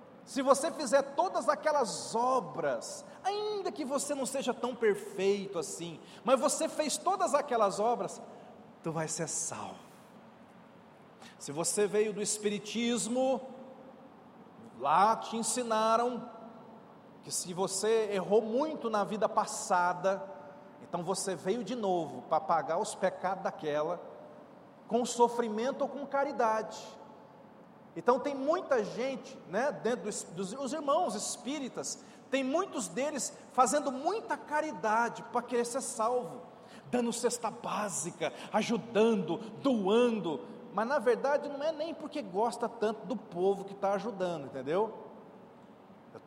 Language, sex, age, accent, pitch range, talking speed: Portuguese, male, 40-59, Brazilian, 210-270 Hz, 125 wpm